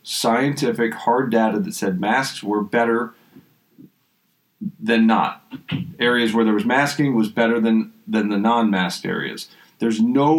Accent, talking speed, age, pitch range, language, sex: American, 140 wpm, 40-59, 100-125 Hz, English, male